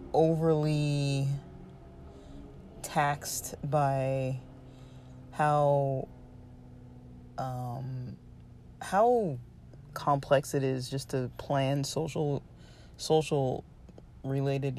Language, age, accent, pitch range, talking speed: English, 20-39, American, 130-150 Hz, 60 wpm